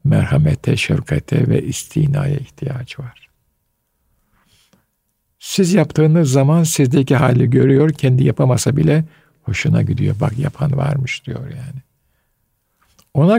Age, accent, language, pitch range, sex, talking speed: 60-79, native, Turkish, 130-155 Hz, male, 105 wpm